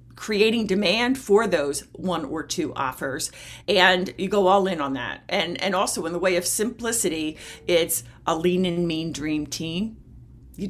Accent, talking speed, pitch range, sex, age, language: American, 175 wpm, 160-225 Hz, female, 50-69, English